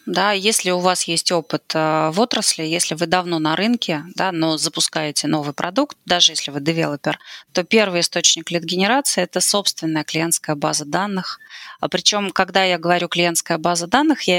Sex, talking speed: female, 165 wpm